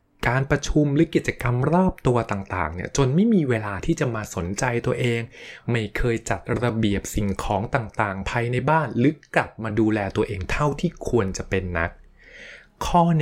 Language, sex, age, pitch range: Thai, male, 20-39, 105-135 Hz